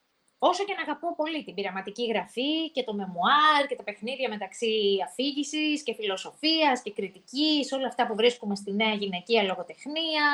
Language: Greek